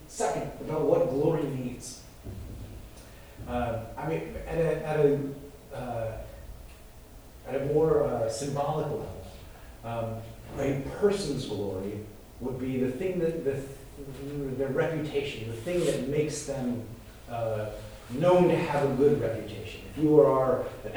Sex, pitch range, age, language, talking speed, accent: male, 115-150 Hz, 30-49, English, 135 wpm, American